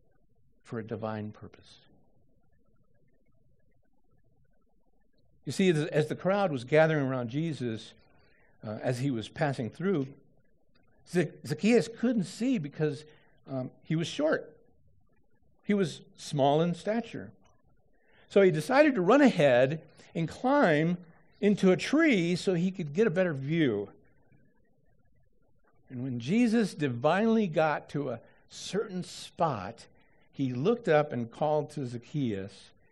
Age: 60-79